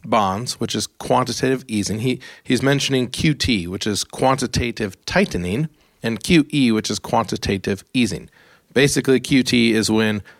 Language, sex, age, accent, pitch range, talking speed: English, male, 40-59, American, 105-125 Hz, 135 wpm